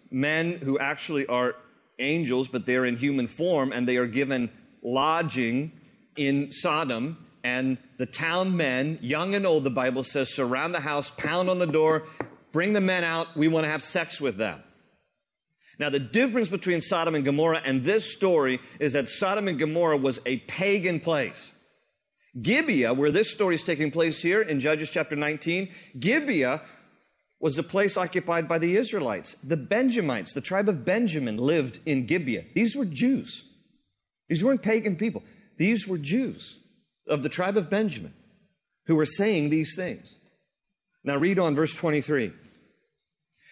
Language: English